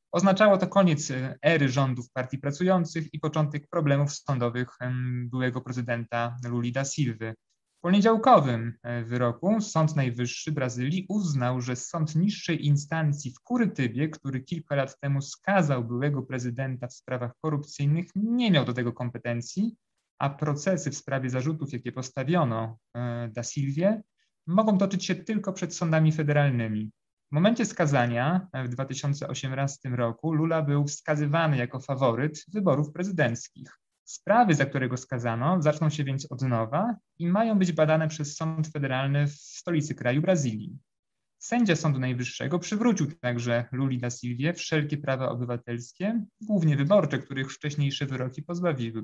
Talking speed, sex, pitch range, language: 135 wpm, male, 125-165 Hz, Polish